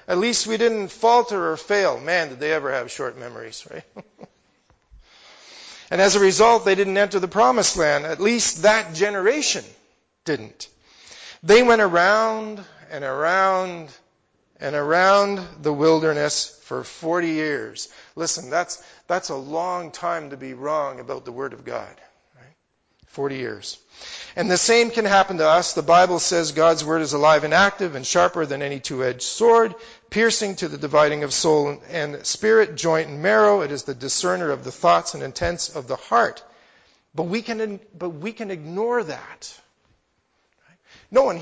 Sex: male